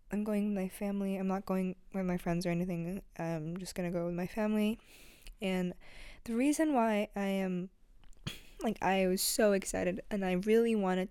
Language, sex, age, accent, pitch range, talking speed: English, female, 10-29, American, 175-205 Hz, 190 wpm